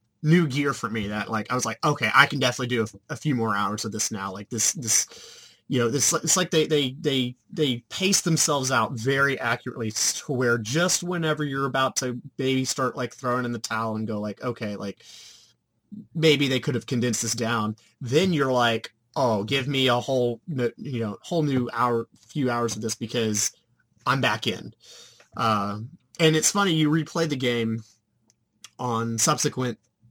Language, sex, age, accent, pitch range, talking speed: English, male, 30-49, American, 115-150 Hz, 190 wpm